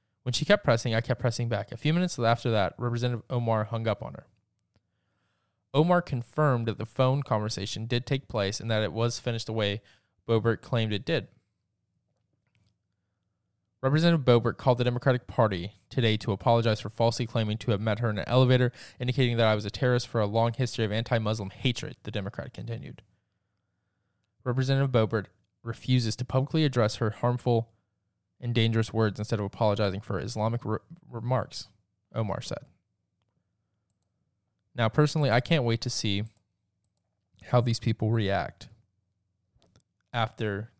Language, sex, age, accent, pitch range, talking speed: English, male, 20-39, American, 100-125 Hz, 155 wpm